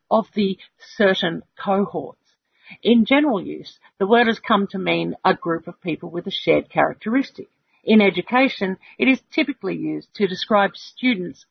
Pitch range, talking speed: 180-230 Hz, 155 wpm